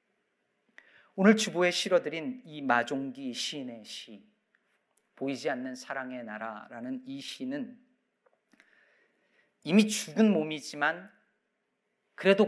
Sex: male